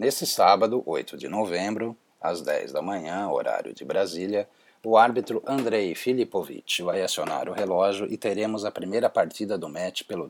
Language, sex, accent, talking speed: Portuguese, male, Brazilian, 165 wpm